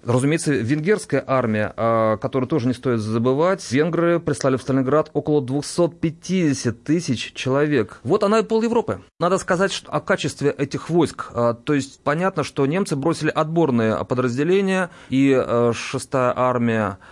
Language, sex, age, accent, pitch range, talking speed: Russian, male, 30-49, native, 130-160 Hz, 135 wpm